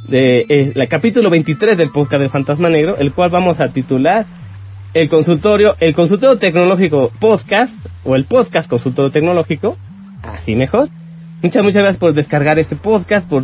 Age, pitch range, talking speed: 30-49, 140-200 Hz, 160 wpm